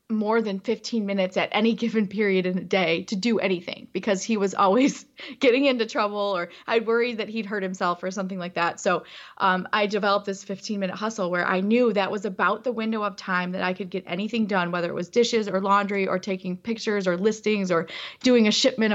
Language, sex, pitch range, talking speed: English, female, 185-220 Hz, 225 wpm